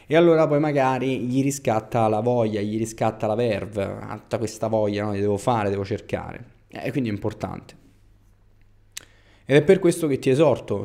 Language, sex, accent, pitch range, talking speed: Italian, male, native, 105-135 Hz, 185 wpm